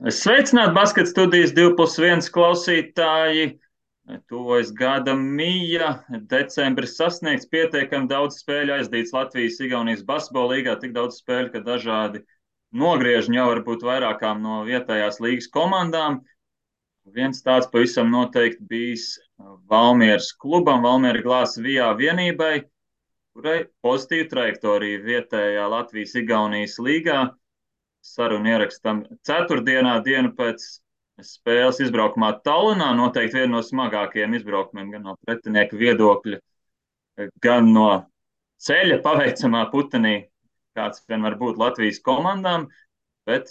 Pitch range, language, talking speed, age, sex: 110-135 Hz, English, 110 wpm, 20-39, male